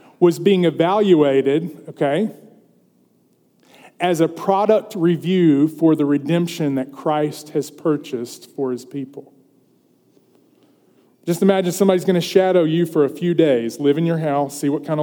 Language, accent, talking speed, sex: English, American, 145 wpm, male